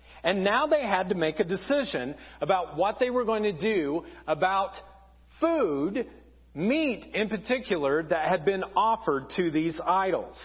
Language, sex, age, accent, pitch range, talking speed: English, male, 40-59, American, 185-255 Hz, 155 wpm